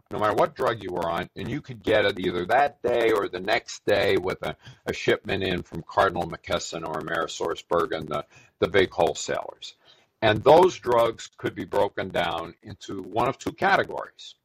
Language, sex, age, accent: English, male, 50-69, American